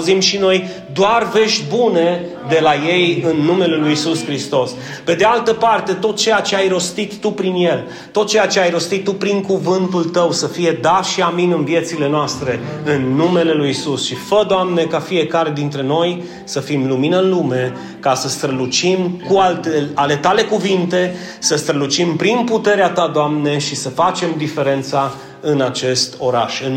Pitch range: 150-195 Hz